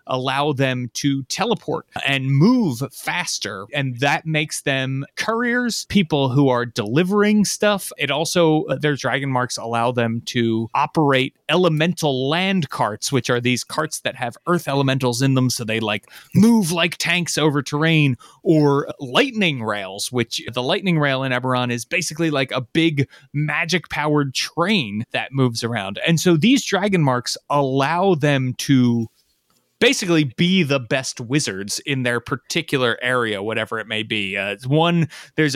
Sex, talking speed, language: male, 155 wpm, English